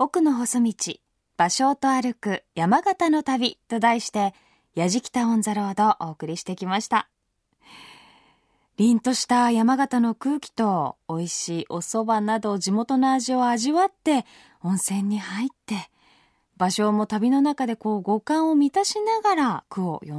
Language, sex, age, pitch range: Japanese, female, 20-39, 205-295 Hz